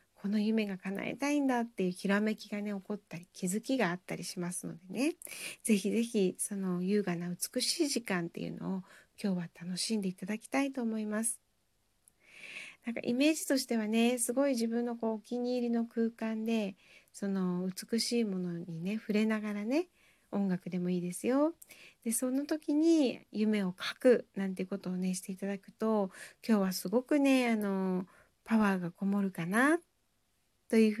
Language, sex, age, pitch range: Japanese, female, 40-59, 185-245 Hz